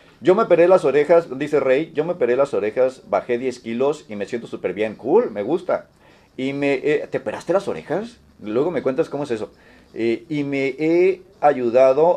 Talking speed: 200 wpm